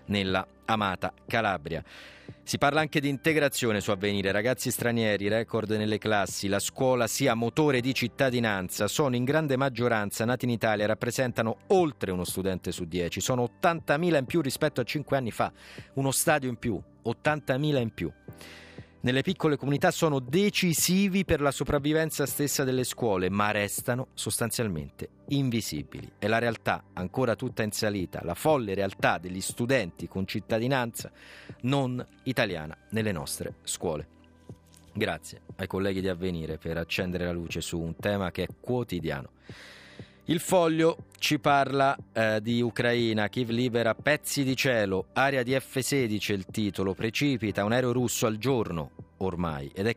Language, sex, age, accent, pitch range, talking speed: Italian, male, 40-59, native, 95-135 Hz, 150 wpm